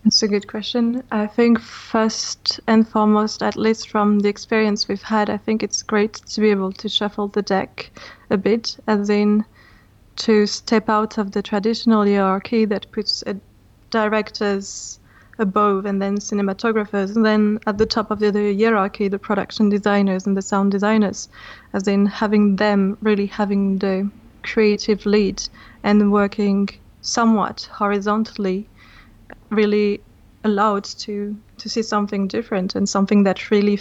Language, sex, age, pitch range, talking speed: Danish, female, 20-39, 195-215 Hz, 155 wpm